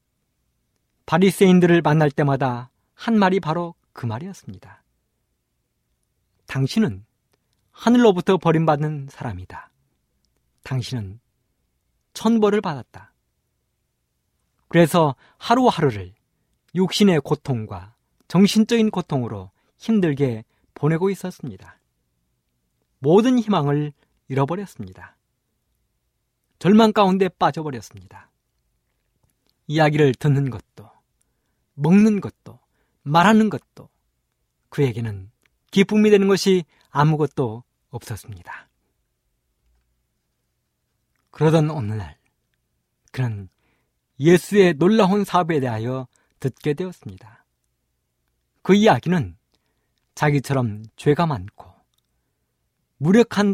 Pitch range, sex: 100-175 Hz, male